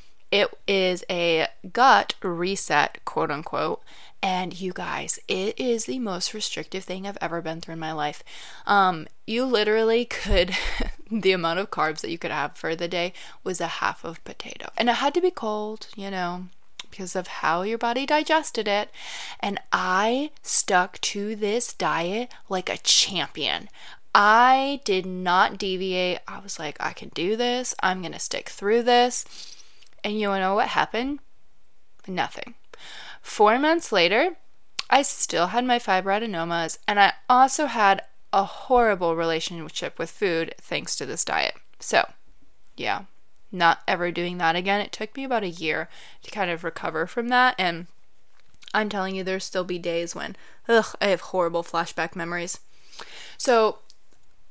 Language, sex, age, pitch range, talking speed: English, female, 20-39, 175-230 Hz, 160 wpm